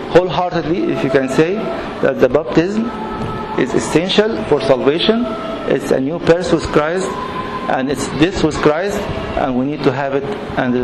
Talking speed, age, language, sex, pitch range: 170 wpm, 50-69, English, male, 145-180 Hz